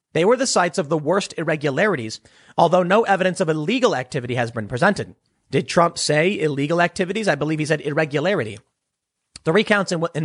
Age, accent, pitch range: 30-49, American, 145-195 Hz